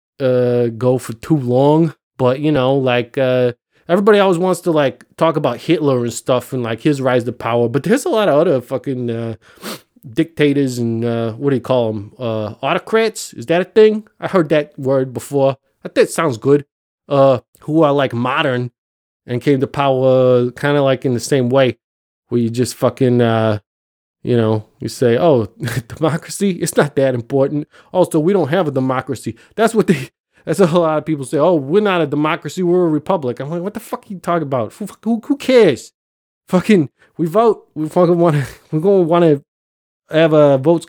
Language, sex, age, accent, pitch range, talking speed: English, male, 20-39, American, 125-170 Hz, 200 wpm